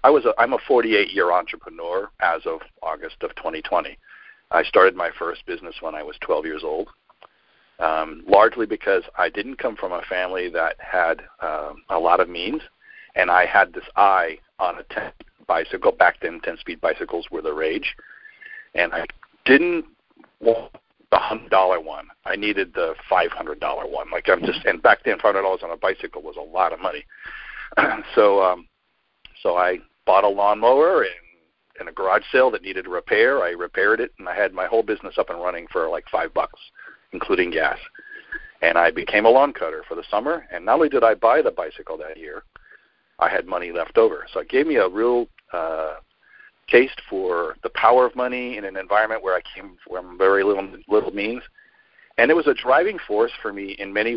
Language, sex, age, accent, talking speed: English, male, 50-69, American, 200 wpm